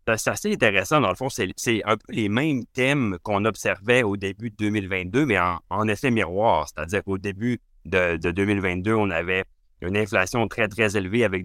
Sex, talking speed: male, 205 wpm